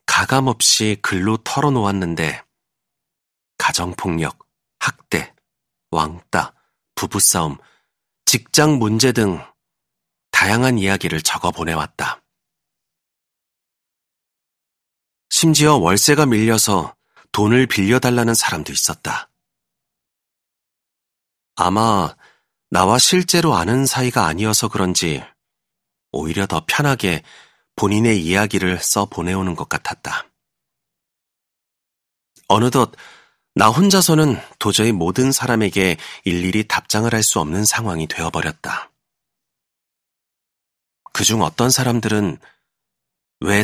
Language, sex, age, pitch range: Korean, male, 40-59, 90-125 Hz